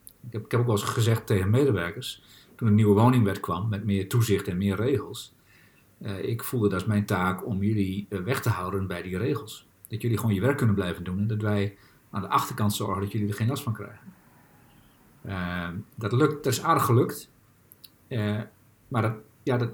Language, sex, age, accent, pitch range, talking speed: Dutch, male, 50-69, Dutch, 100-120 Hz, 215 wpm